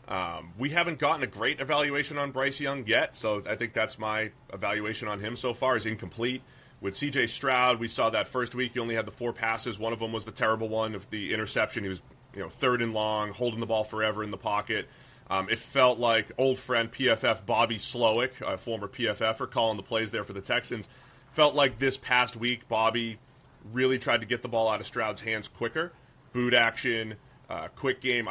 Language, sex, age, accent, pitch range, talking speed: English, male, 30-49, American, 110-130 Hz, 215 wpm